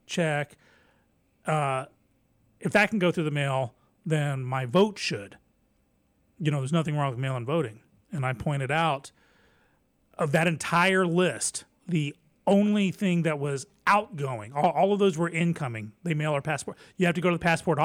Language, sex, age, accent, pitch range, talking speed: English, male, 30-49, American, 145-175 Hz, 175 wpm